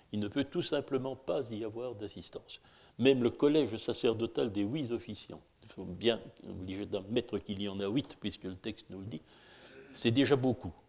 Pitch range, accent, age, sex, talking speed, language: 95-130 Hz, French, 60-79, male, 185 wpm, French